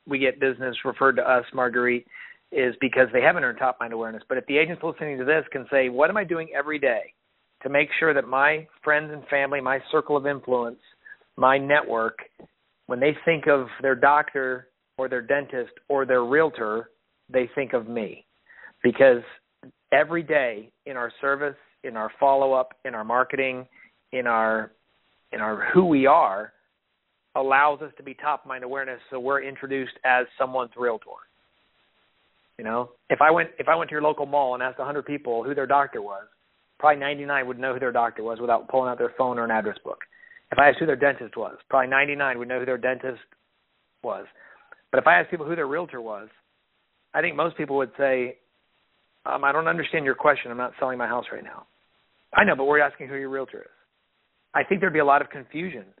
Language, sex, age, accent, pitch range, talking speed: English, male, 40-59, American, 125-145 Hz, 205 wpm